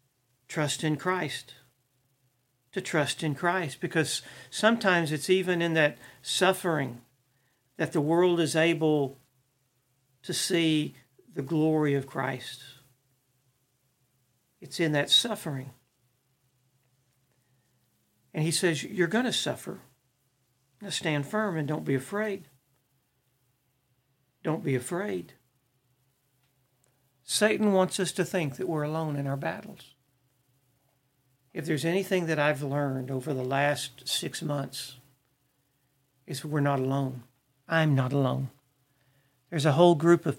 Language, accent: English, American